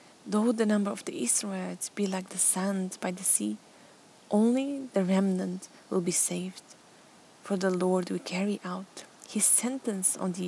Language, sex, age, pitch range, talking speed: English, female, 20-39, 185-215 Hz, 165 wpm